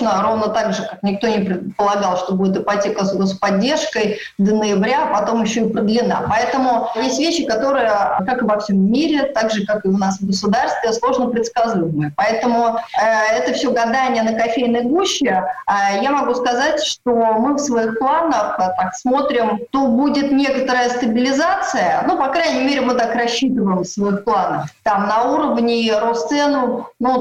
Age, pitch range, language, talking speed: 20-39, 215-275 Hz, Russian, 165 wpm